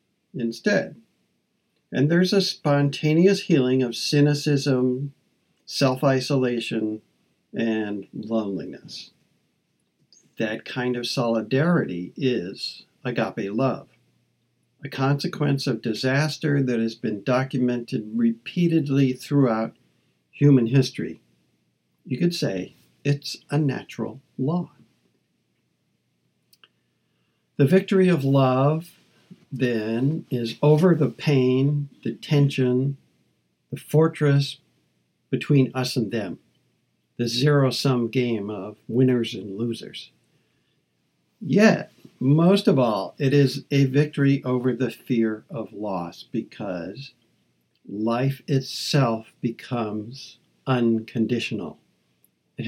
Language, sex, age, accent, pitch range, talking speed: English, male, 60-79, American, 115-145 Hz, 90 wpm